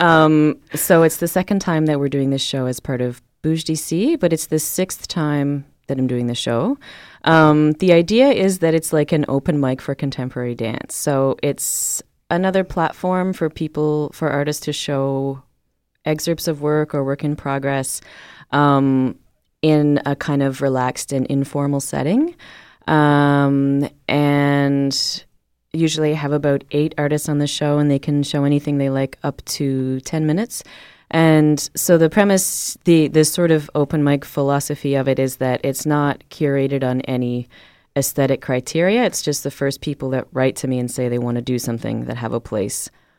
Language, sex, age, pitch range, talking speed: French, female, 20-39, 135-155 Hz, 180 wpm